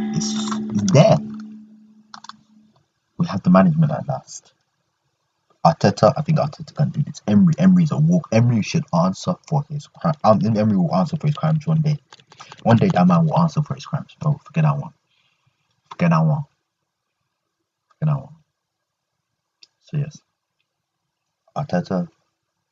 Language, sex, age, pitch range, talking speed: English, male, 30-49, 150-170 Hz, 155 wpm